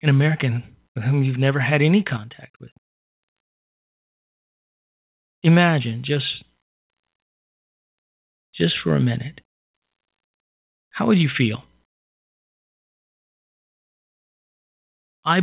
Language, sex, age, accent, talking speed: English, male, 40-59, American, 80 wpm